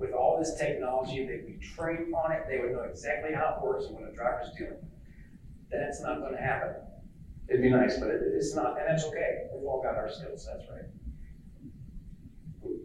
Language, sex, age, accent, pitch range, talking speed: English, male, 50-69, American, 130-185 Hz, 200 wpm